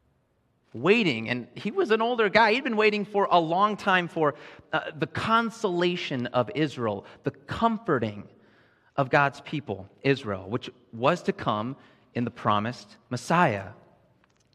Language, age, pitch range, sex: English, 30-49, 125-205 Hz, male